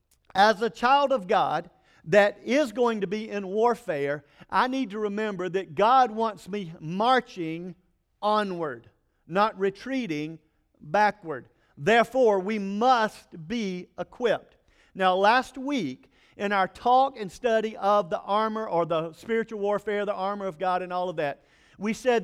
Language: English